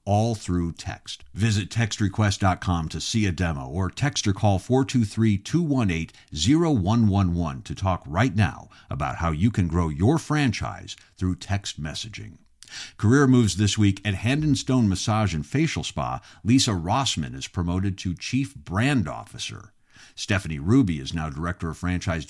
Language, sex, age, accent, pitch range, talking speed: English, male, 50-69, American, 85-115 Hz, 150 wpm